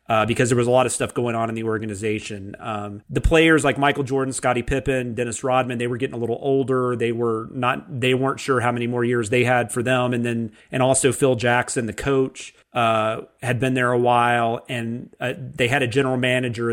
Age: 30-49